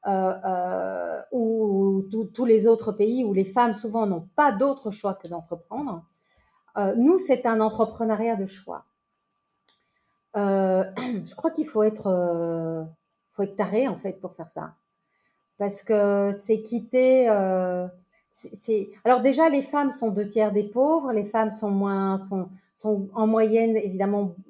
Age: 40-59